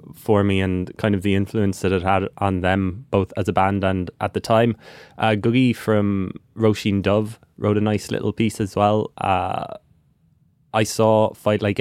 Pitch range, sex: 100-125 Hz, male